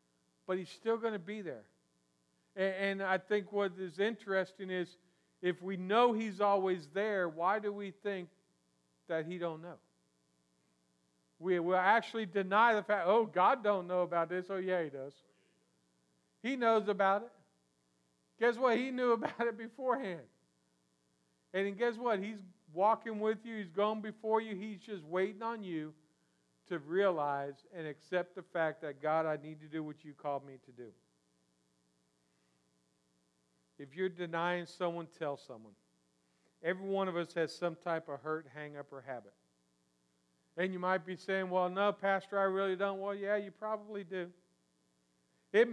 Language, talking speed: English, 165 wpm